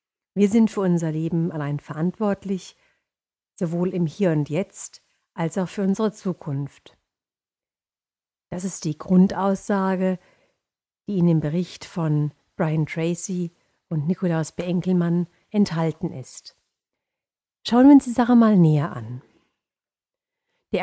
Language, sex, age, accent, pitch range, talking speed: German, female, 50-69, German, 165-205 Hz, 120 wpm